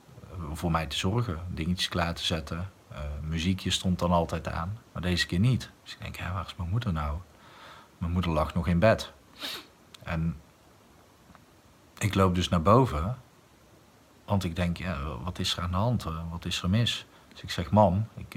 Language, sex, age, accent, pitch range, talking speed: Dutch, male, 40-59, Dutch, 90-110 Hz, 195 wpm